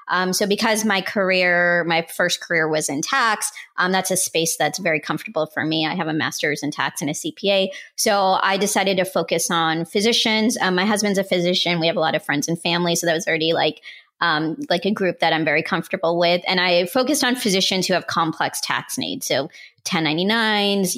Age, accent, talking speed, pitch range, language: 30-49, American, 215 wpm, 175-210 Hz, English